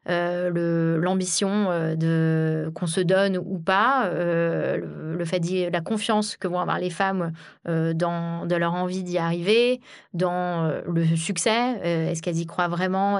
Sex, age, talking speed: female, 20-39, 165 wpm